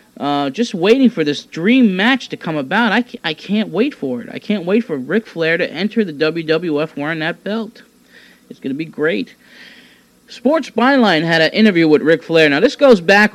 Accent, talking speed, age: American, 205 wpm, 40-59